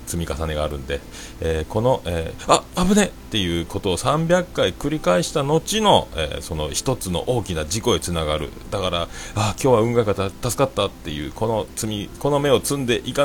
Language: Japanese